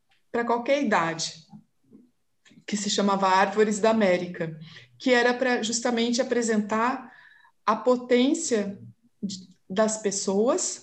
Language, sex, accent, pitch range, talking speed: Portuguese, female, Brazilian, 195-245 Hz, 100 wpm